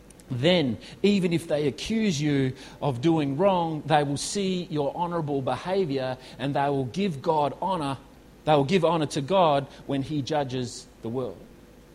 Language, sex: English, male